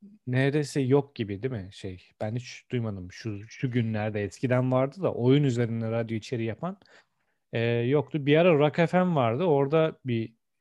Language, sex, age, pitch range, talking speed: Turkish, male, 40-59, 110-150 Hz, 165 wpm